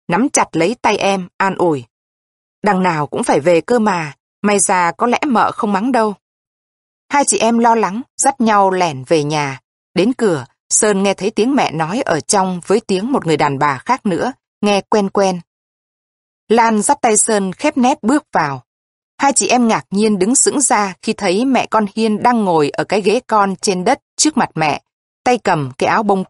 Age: 20-39